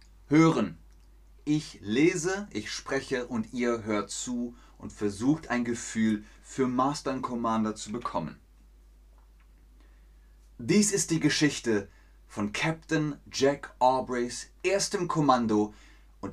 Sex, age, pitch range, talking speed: male, 30-49, 100-150 Hz, 105 wpm